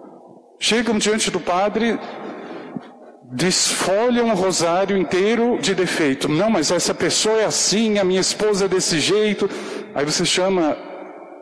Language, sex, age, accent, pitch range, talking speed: Portuguese, male, 50-69, Brazilian, 155-200 Hz, 130 wpm